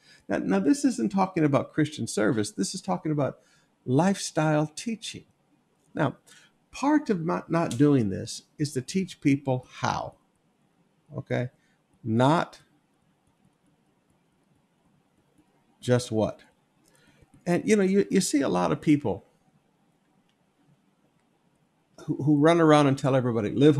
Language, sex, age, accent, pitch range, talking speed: English, male, 50-69, American, 130-180 Hz, 120 wpm